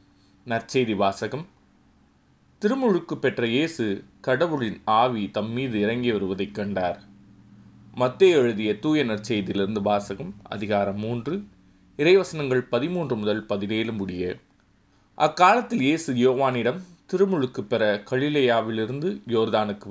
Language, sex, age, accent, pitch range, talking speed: Tamil, male, 20-39, native, 100-135 Hz, 95 wpm